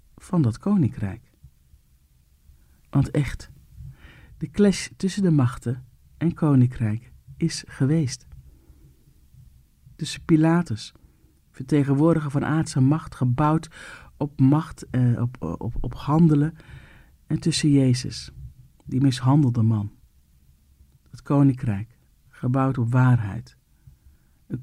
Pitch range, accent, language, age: 105-160 Hz, Dutch, Dutch, 50-69